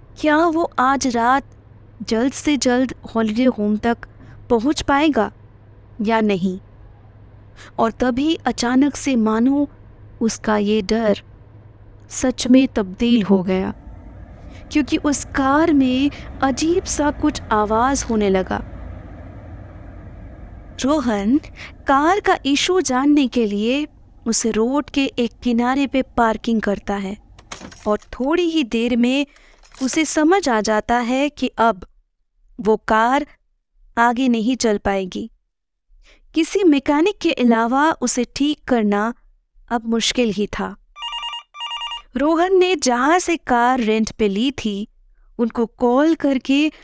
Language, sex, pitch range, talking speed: Hindi, female, 215-280 Hz, 120 wpm